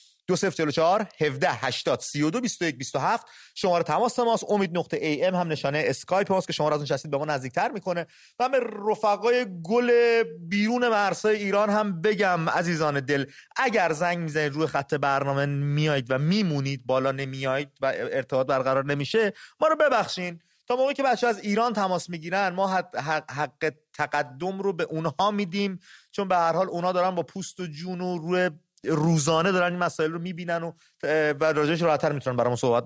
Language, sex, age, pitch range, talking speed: English, male, 30-49, 155-215 Hz, 170 wpm